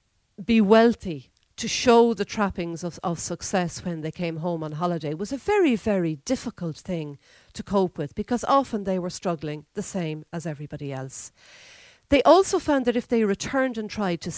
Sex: female